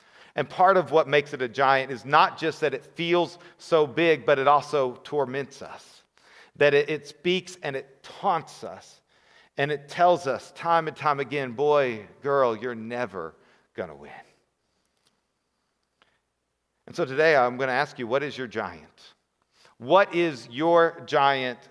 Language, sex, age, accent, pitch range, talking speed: English, male, 40-59, American, 140-170 Hz, 165 wpm